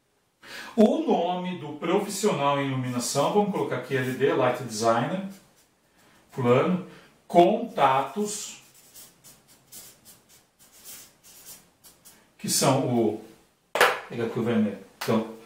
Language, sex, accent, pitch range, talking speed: Portuguese, male, Brazilian, 135-175 Hz, 85 wpm